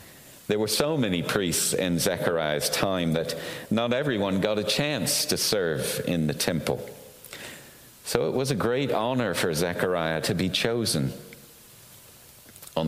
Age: 50-69